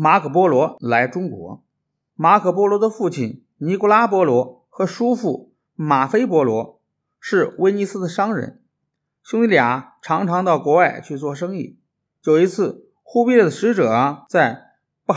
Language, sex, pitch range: Chinese, male, 130-190 Hz